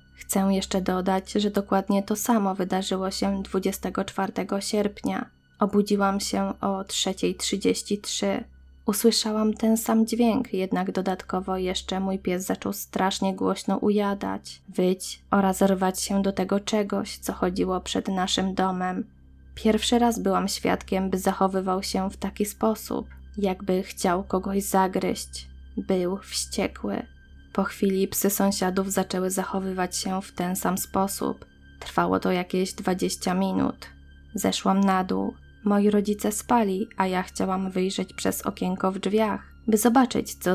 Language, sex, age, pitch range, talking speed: Polish, female, 20-39, 180-200 Hz, 130 wpm